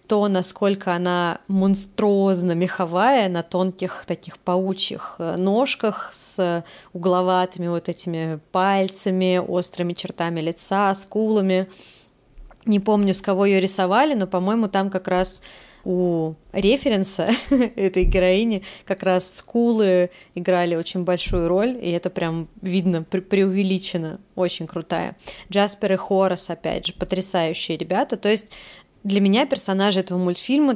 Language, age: Russian, 20-39